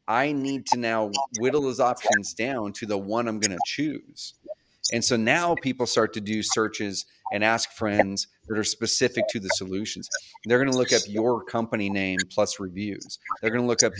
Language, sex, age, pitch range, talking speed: English, male, 30-49, 105-130 Hz, 200 wpm